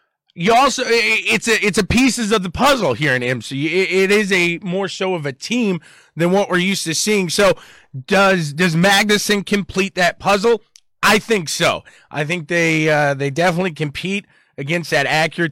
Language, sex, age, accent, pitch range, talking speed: English, male, 30-49, American, 160-225 Hz, 180 wpm